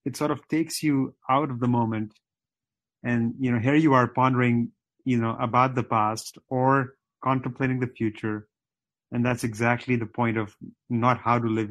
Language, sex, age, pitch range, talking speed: English, male, 30-49, 110-130 Hz, 180 wpm